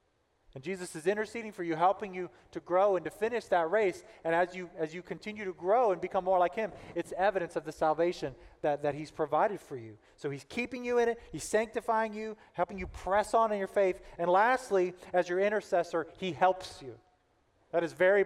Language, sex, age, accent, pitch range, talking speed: English, male, 30-49, American, 150-200 Hz, 215 wpm